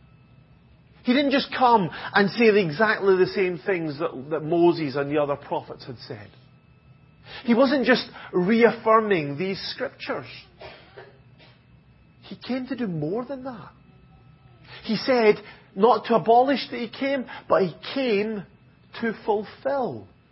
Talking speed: 135 wpm